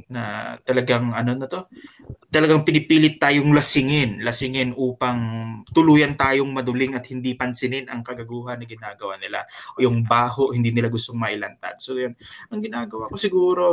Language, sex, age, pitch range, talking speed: Filipino, male, 20-39, 125-165 Hz, 155 wpm